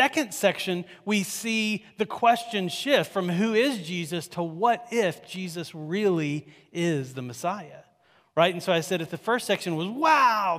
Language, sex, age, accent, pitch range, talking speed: English, male, 40-59, American, 140-195 Hz, 170 wpm